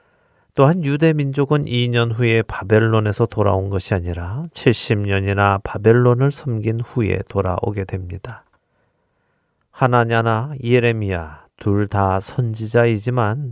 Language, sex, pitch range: Korean, male, 100-130 Hz